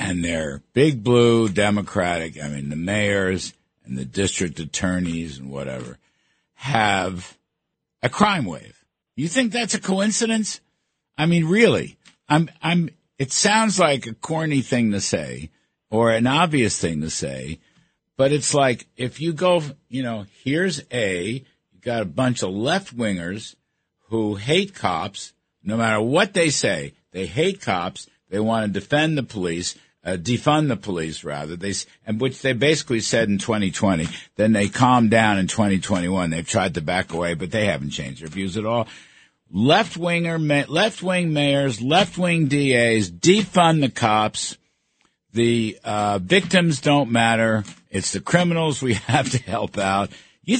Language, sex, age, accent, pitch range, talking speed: English, male, 60-79, American, 95-160 Hz, 155 wpm